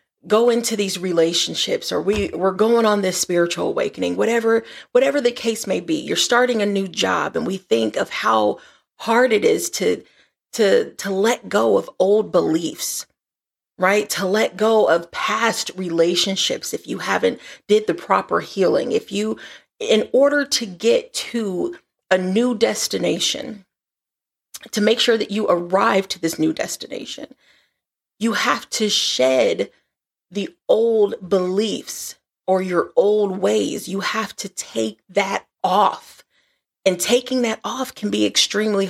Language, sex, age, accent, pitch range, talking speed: English, female, 30-49, American, 190-240 Hz, 150 wpm